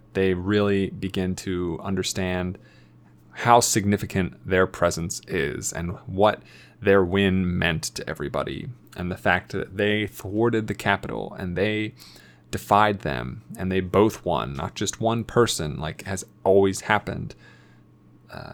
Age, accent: 20-39, American